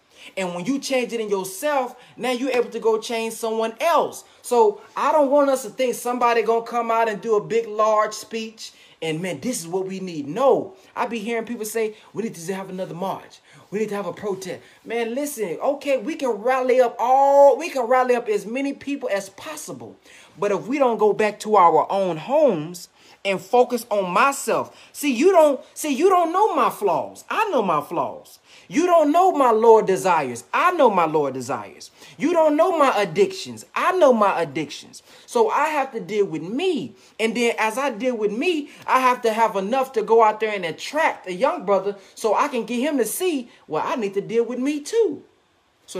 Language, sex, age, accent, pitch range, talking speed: English, male, 30-49, American, 195-275 Hz, 215 wpm